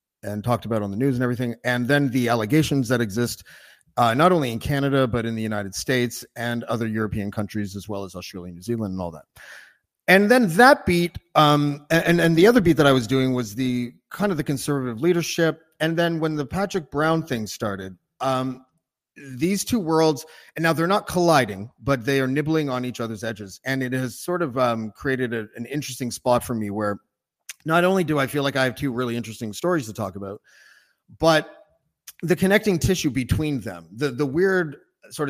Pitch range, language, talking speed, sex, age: 110-155 Hz, English, 205 wpm, male, 40-59